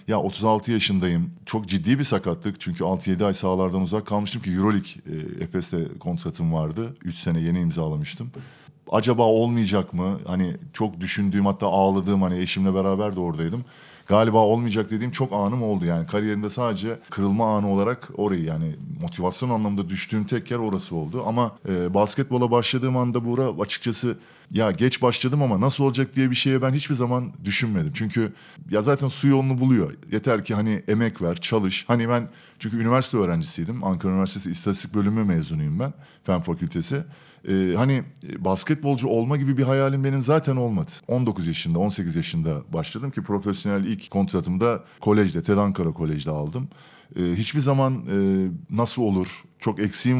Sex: male